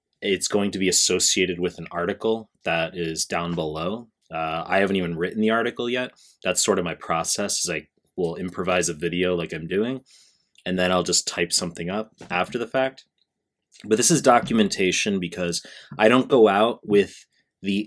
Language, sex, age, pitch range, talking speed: English, male, 30-49, 90-110 Hz, 185 wpm